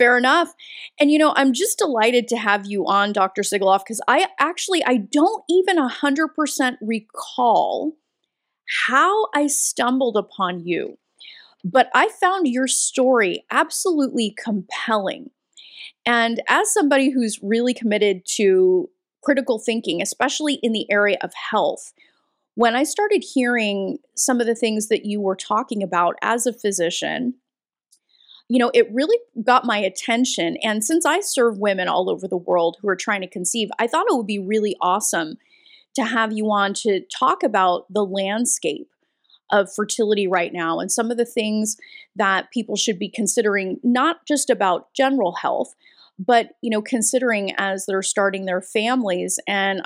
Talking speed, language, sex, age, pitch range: 160 wpm, English, female, 30-49, 205-280 Hz